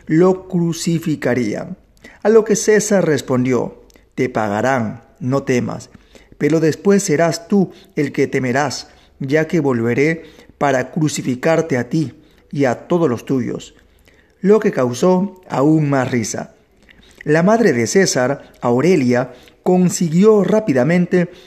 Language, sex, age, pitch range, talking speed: Spanish, male, 40-59, 135-175 Hz, 120 wpm